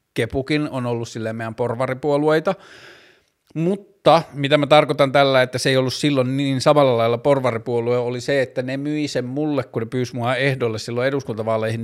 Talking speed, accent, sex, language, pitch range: 165 wpm, native, male, Finnish, 120-135 Hz